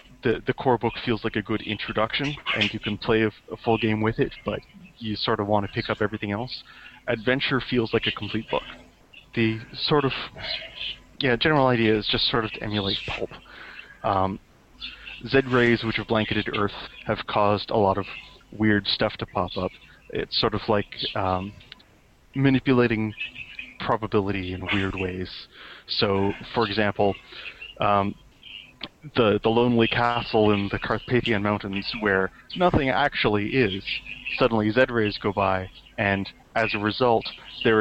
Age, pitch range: 30-49, 100-120 Hz